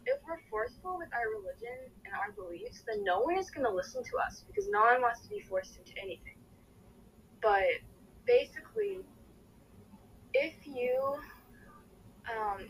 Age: 20-39